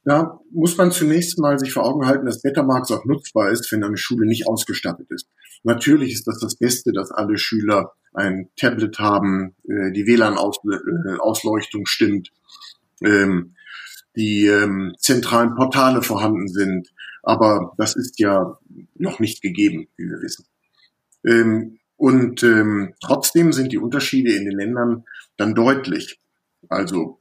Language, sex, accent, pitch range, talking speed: German, male, German, 105-130 Hz, 130 wpm